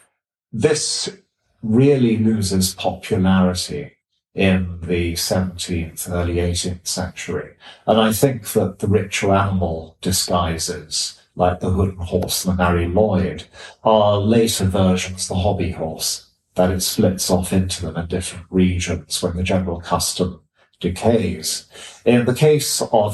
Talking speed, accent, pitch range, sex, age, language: 135 wpm, British, 90-105 Hz, male, 50-69, English